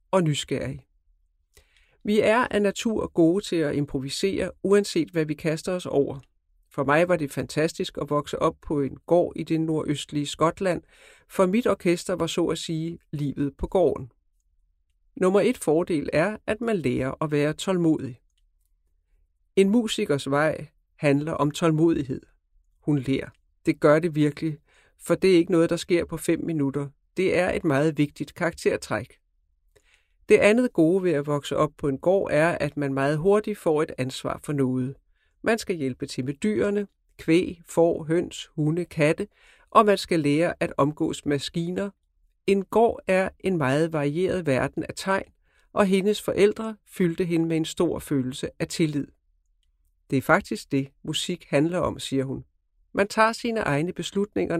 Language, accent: Danish, native